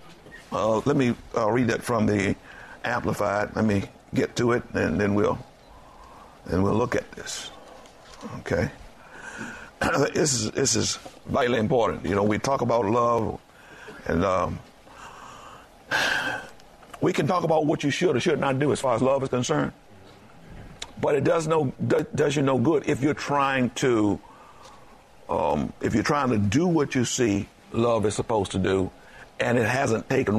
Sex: male